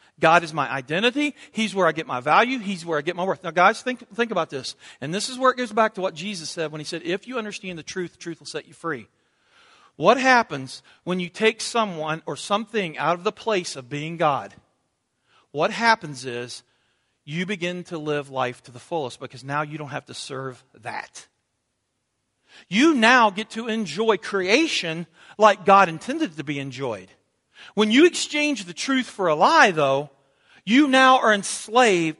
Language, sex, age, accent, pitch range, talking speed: English, male, 40-59, American, 160-235 Hz, 200 wpm